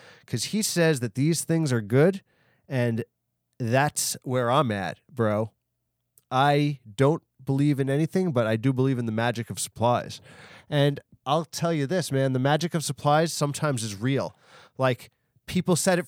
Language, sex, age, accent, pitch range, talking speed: English, male, 30-49, American, 125-170 Hz, 170 wpm